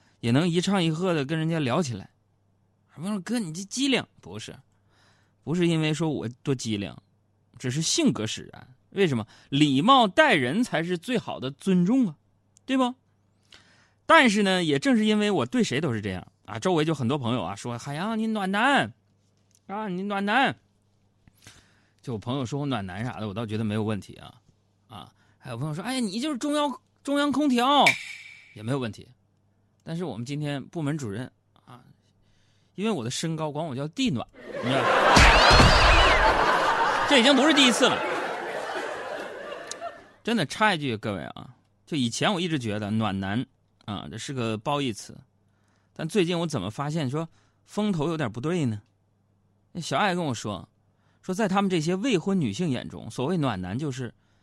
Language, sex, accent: Chinese, male, native